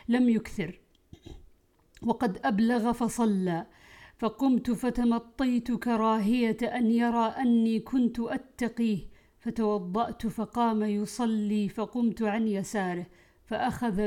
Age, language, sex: 50-69, Arabic, female